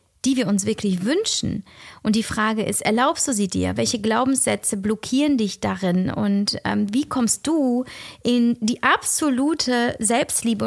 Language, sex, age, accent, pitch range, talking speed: German, female, 30-49, German, 205-250 Hz, 150 wpm